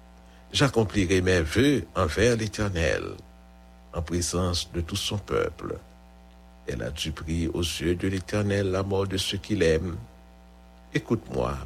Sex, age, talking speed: male, 60-79, 135 wpm